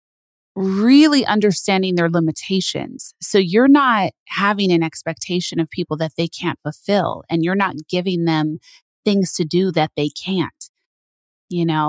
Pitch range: 160-190 Hz